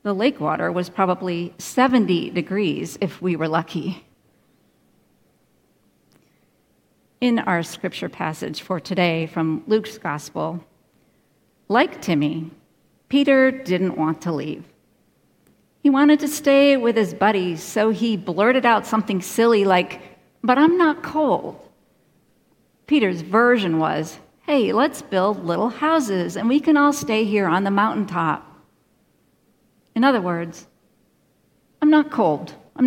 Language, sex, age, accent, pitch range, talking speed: English, female, 50-69, American, 175-245 Hz, 125 wpm